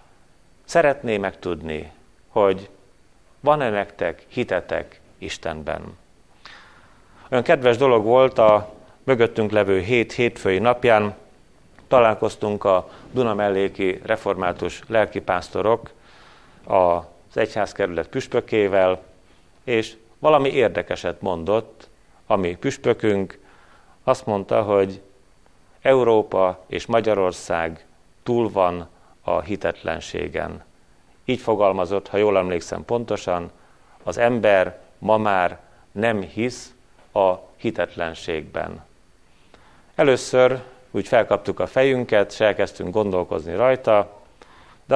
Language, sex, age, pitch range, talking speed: Hungarian, male, 40-59, 90-120 Hz, 85 wpm